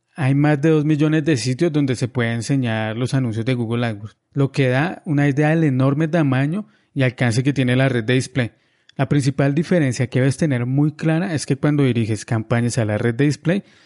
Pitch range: 125-150 Hz